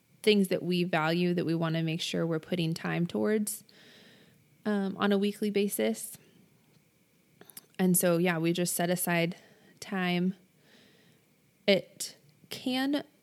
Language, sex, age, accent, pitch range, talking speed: English, female, 20-39, American, 170-210 Hz, 130 wpm